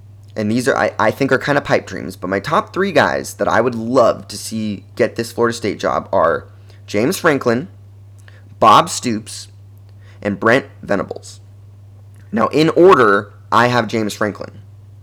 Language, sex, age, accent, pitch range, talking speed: English, male, 20-39, American, 100-130 Hz, 170 wpm